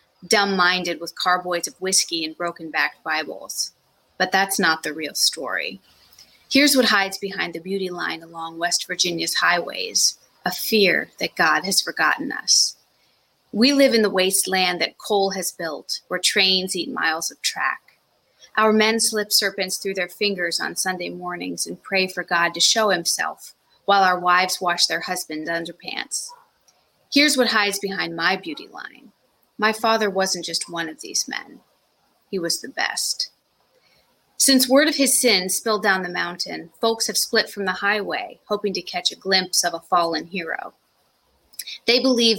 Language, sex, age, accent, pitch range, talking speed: English, female, 30-49, American, 175-215 Hz, 165 wpm